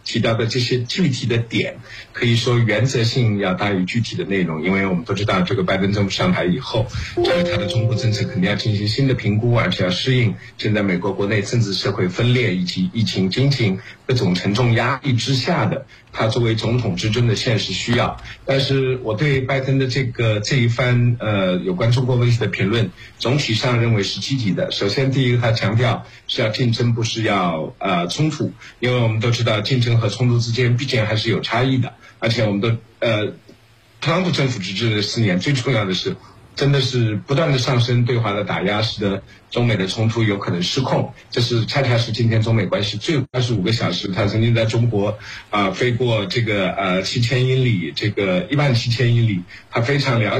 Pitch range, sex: 105-125 Hz, male